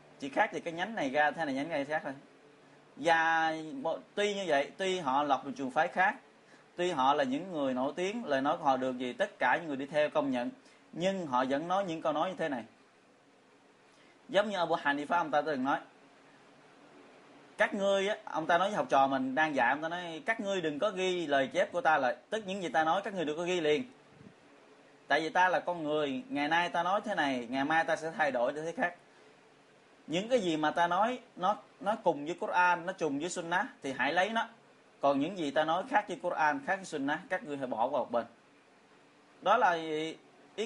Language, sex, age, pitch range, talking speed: Vietnamese, male, 20-39, 150-190 Hz, 240 wpm